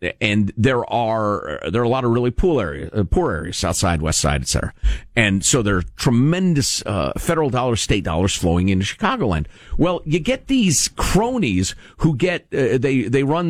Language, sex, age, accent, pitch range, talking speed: English, male, 50-69, American, 95-150 Hz, 185 wpm